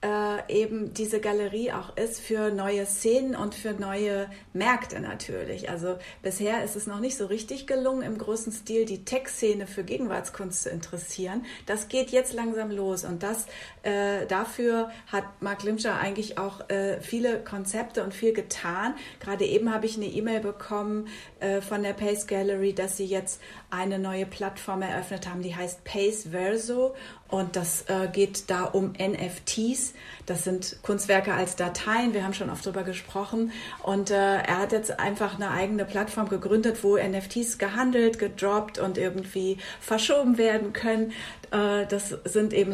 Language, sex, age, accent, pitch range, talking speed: German, female, 40-59, German, 190-215 Hz, 165 wpm